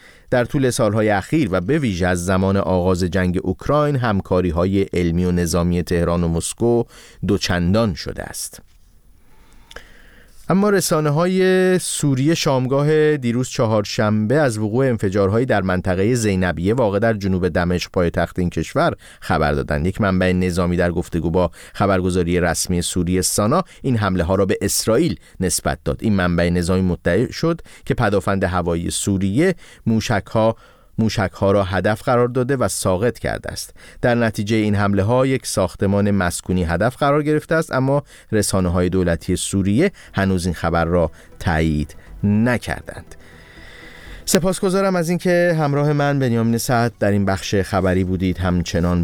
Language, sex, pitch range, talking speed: Persian, male, 90-120 Hz, 145 wpm